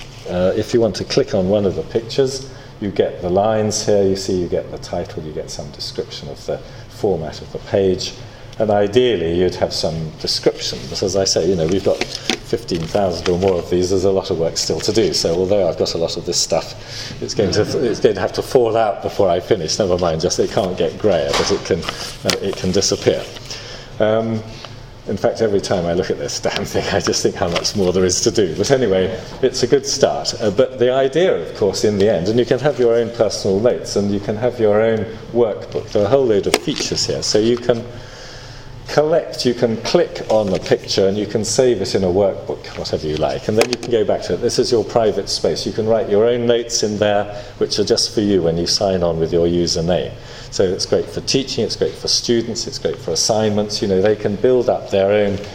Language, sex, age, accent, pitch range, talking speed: English, male, 40-59, British, 95-120 Hz, 245 wpm